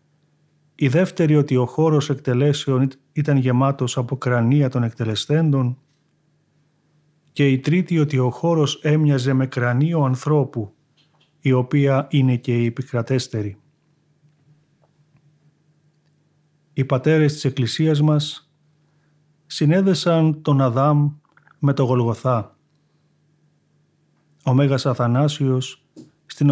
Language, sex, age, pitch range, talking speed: Greek, male, 40-59, 130-150 Hz, 95 wpm